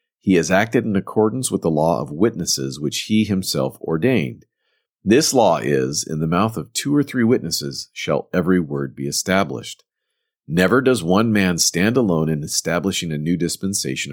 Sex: male